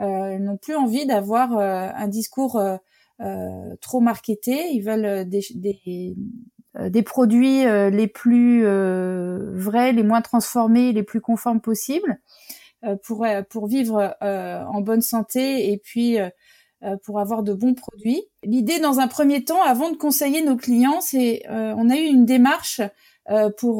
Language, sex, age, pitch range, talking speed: French, female, 30-49, 210-265 Hz, 175 wpm